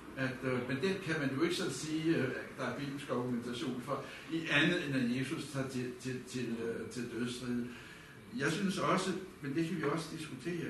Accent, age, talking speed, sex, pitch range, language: native, 60-79, 215 wpm, male, 130-155 Hz, Danish